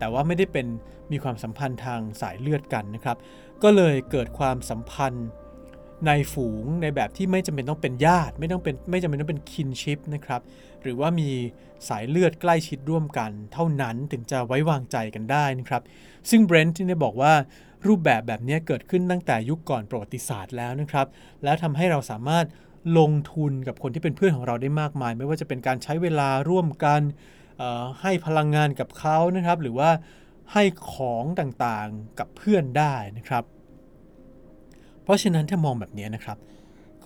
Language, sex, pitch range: Thai, male, 125-165 Hz